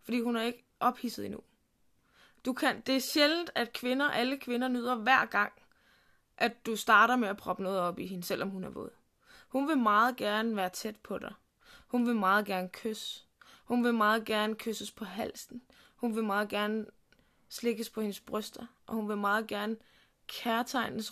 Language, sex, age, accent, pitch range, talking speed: Danish, female, 20-39, native, 220-255 Hz, 190 wpm